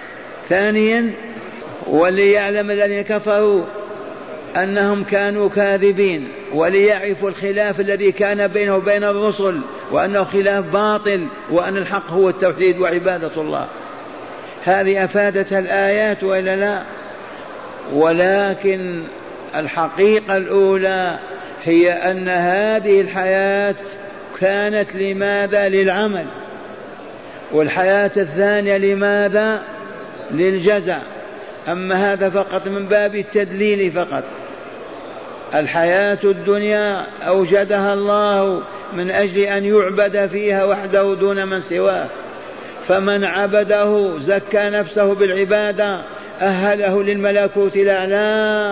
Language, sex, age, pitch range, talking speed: Arabic, male, 60-79, 190-205 Hz, 85 wpm